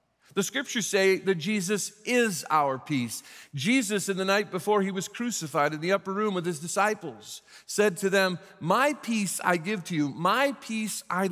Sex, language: male, English